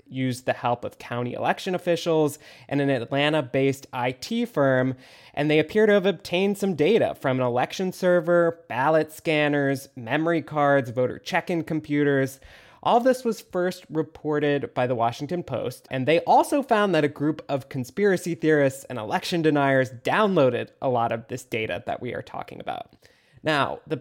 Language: English